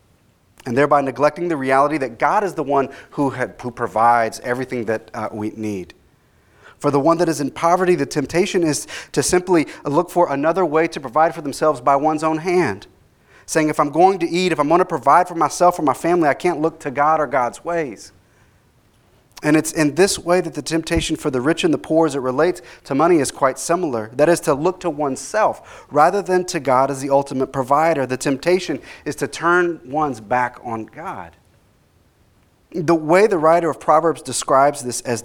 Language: English